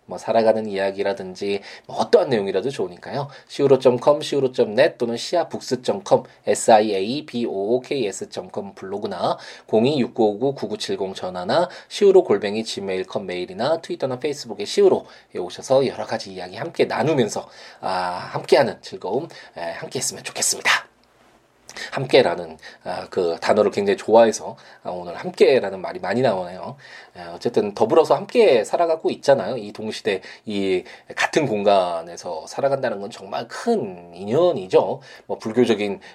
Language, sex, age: Korean, male, 20-39